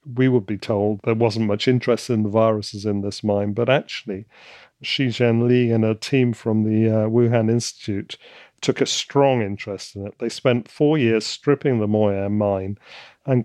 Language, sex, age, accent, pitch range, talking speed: English, male, 40-59, British, 105-125 Hz, 185 wpm